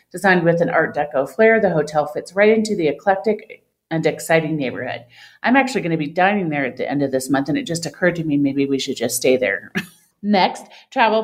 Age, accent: 40-59, American